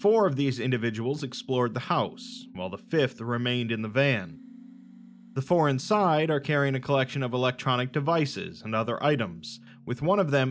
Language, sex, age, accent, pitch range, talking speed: English, male, 30-49, American, 115-150 Hz, 175 wpm